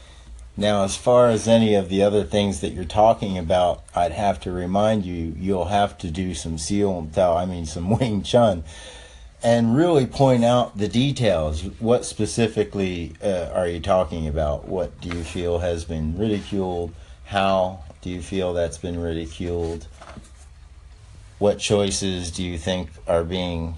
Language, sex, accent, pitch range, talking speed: English, male, American, 80-105 Hz, 165 wpm